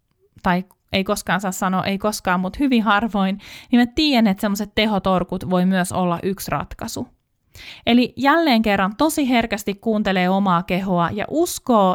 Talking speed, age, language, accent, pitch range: 155 wpm, 30-49, Finnish, native, 180-230 Hz